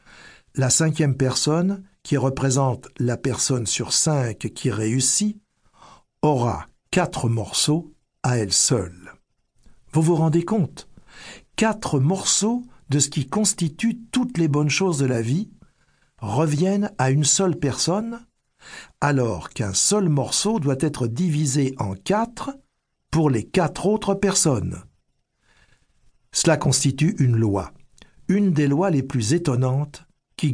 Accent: French